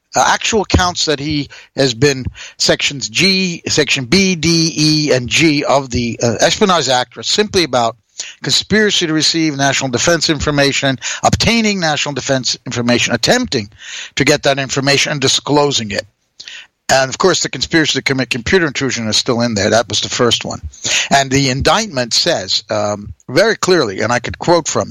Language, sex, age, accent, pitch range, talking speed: English, male, 60-79, American, 120-155 Hz, 170 wpm